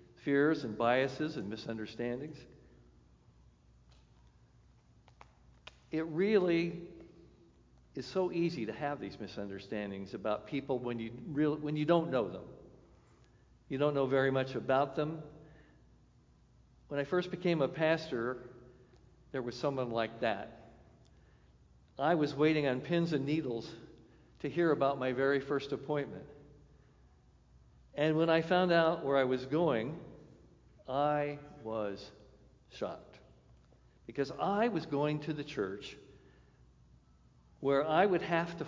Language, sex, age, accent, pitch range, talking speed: English, male, 50-69, American, 120-160 Hz, 125 wpm